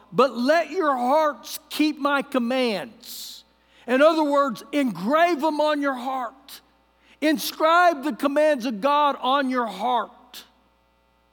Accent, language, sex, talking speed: American, English, male, 120 wpm